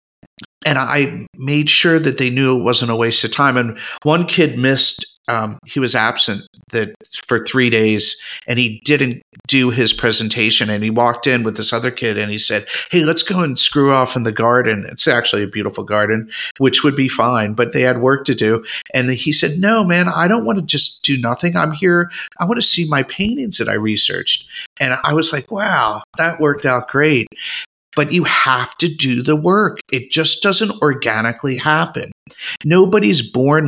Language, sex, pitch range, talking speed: English, male, 120-150 Hz, 200 wpm